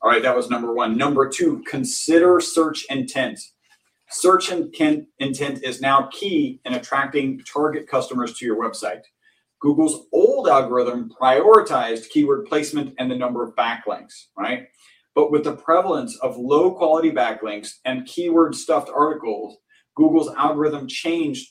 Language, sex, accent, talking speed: English, male, American, 140 wpm